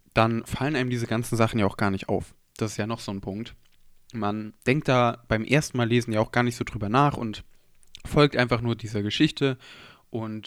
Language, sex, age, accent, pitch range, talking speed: German, male, 20-39, German, 115-140 Hz, 225 wpm